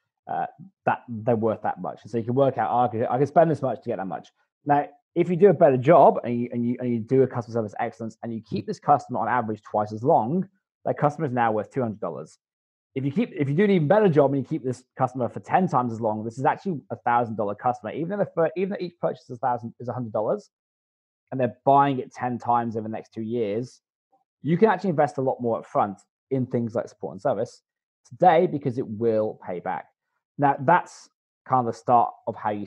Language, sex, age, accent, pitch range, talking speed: English, male, 20-39, British, 110-145 Hz, 240 wpm